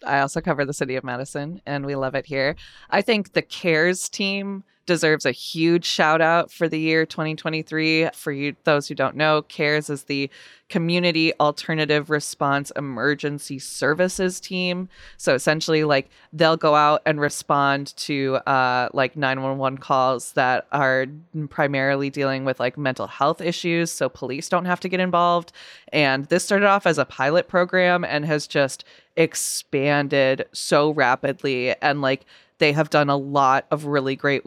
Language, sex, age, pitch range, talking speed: English, female, 20-39, 135-160 Hz, 160 wpm